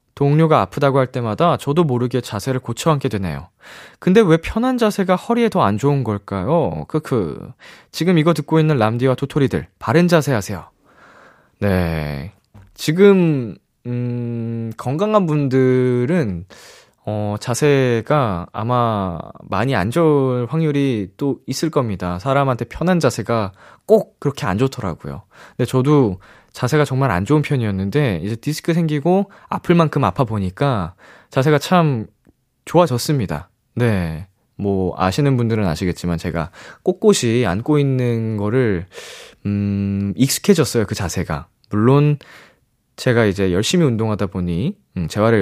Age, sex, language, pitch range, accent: 20-39, male, Korean, 100-150 Hz, native